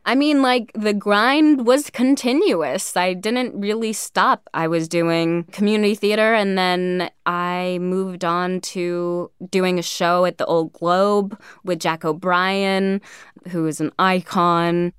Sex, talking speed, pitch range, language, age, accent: female, 145 wpm, 175-225 Hz, English, 20-39, American